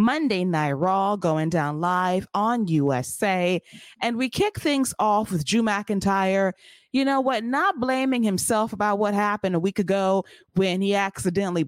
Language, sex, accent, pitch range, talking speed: English, female, American, 175-230 Hz, 160 wpm